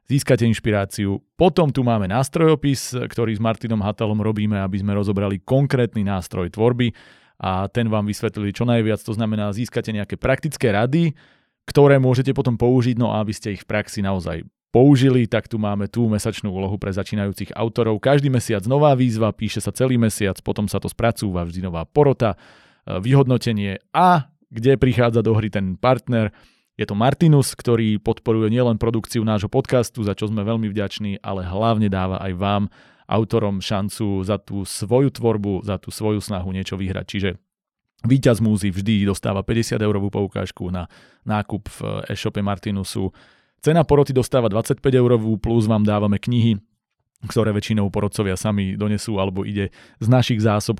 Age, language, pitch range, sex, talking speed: 30-49, Slovak, 100-120 Hz, male, 160 wpm